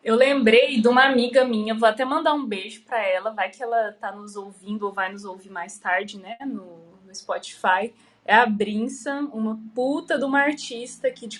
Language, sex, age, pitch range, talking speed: Portuguese, female, 20-39, 215-270 Hz, 205 wpm